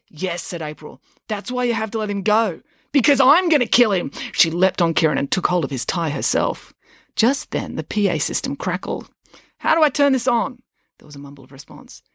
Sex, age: female, 30-49